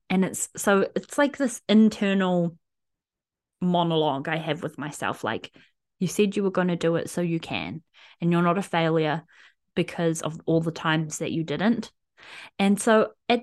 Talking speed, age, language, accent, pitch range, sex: 180 wpm, 20-39, English, Australian, 175-225 Hz, female